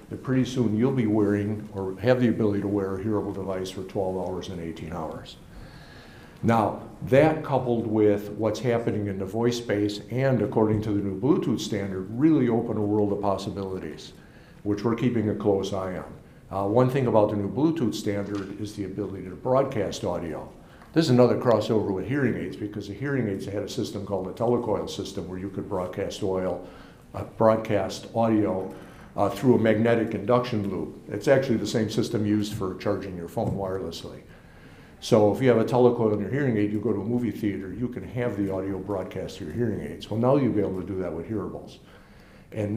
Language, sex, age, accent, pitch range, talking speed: English, male, 60-79, American, 95-115 Hz, 205 wpm